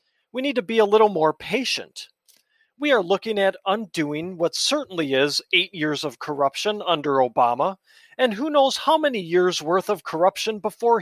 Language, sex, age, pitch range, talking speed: English, male, 40-59, 180-260 Hz, 175 wpm